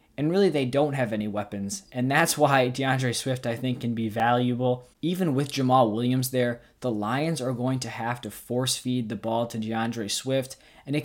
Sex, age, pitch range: male, 20-39, 120-140 Hz